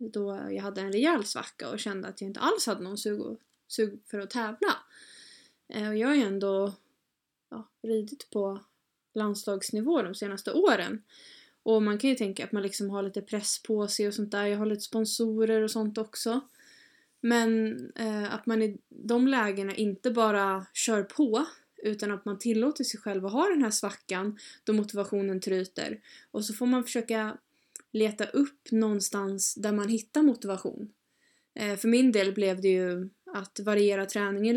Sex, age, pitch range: female, 20-39, 205-235 Hz